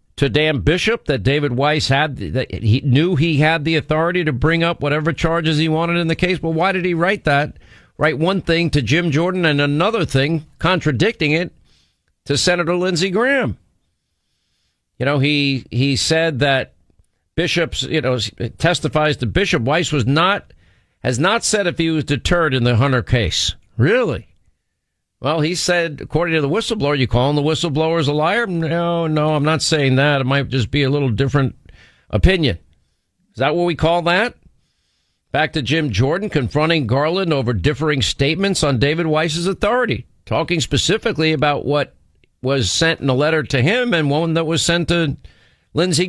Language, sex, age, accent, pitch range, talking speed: English, male, 50-69, American, 135-170 Hz, 180 wpm